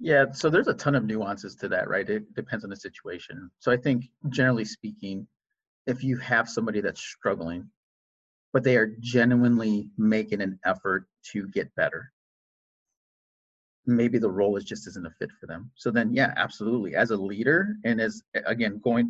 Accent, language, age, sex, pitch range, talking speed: American, English, 30-49, male, 105-135 Hz, 180 wpm